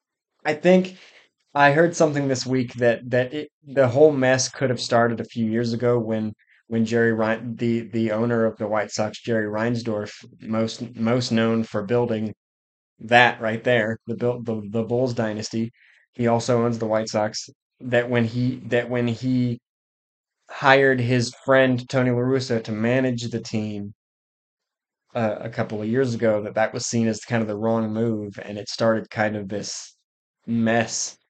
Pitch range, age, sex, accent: 110-130 Hz, 20-39, male, American